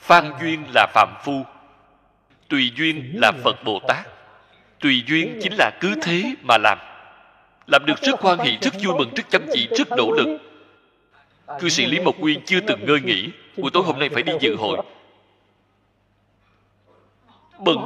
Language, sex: Vietnamese, male